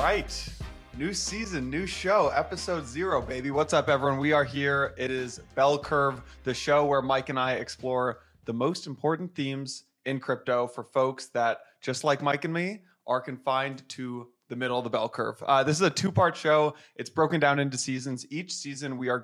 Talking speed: 200 wpm